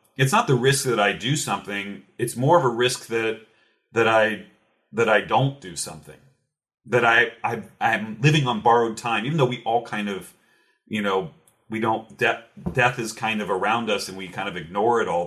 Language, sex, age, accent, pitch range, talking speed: English, male, 40-59, American, 100-125 Hz, 205 wpm